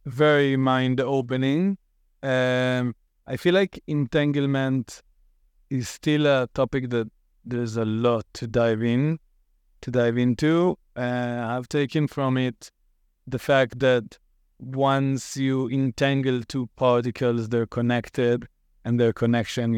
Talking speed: 120 wpm